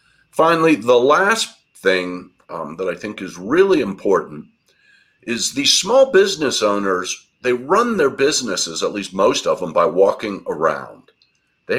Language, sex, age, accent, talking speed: English, male, 50-69, American, 150 wpm